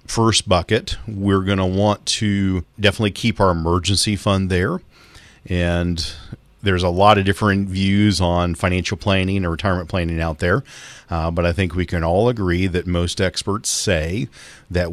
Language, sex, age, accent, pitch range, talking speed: English, male, 40-59, American, 85-100 Hz, 165 wpm